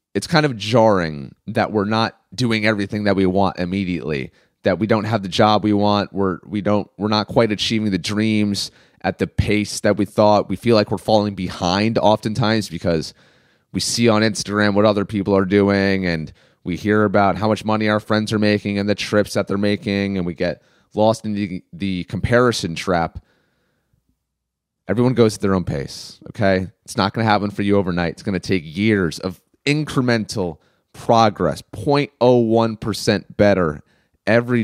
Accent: American